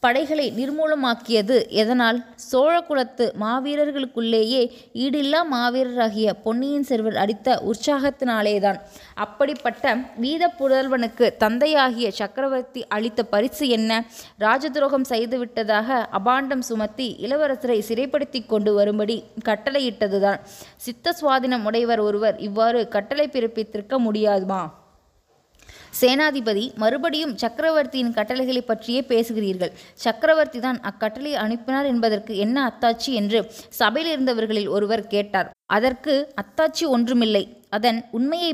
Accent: native